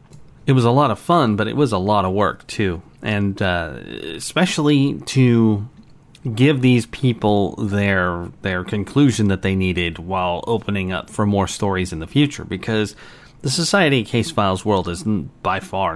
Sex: male